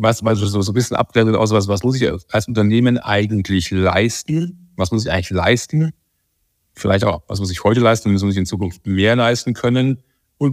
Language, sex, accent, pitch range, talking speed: German, male, German, 95-120 Hz, 200 wpm